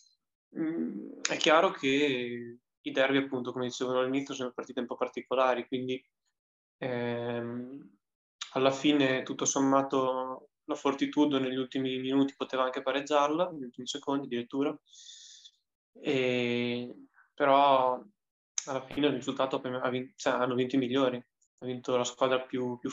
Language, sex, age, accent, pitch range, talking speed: Italian, male, 10-29, native, 125-140 Hz, 125 wpm